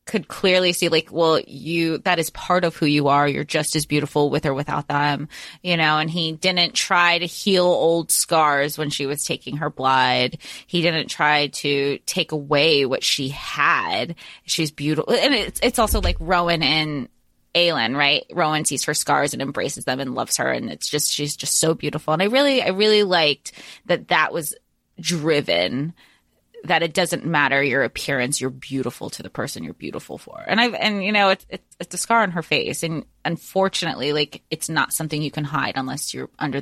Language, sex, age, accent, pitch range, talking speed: English, female, 20-39, American, 145-180 Hz, 200 wpm